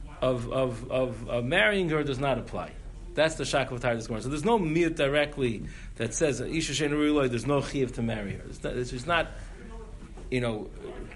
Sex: male